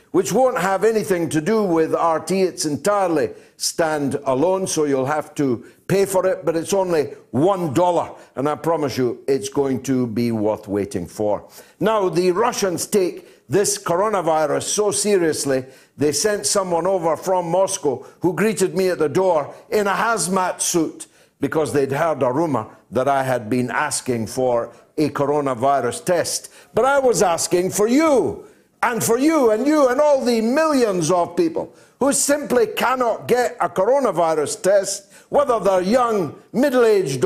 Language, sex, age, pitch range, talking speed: English, male, 60-79, 155-230 Hz, 165 wpm